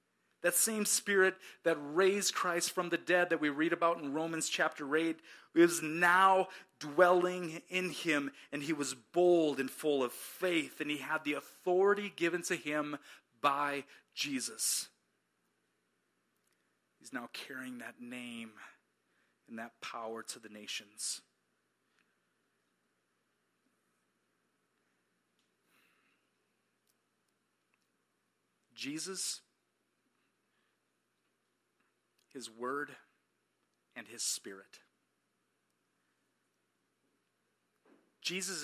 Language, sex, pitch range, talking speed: English, male, 145-180 Hz, 90 wpm